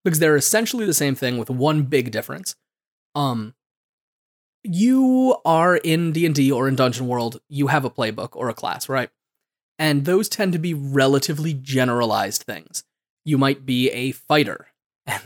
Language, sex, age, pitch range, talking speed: English, male, 20-39, 130-165 Hz, 160 wpm